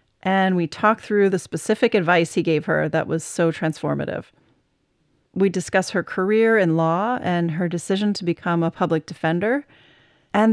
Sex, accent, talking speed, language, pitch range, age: female, American, 165 wpm, English, 170-215 Hz, 30-49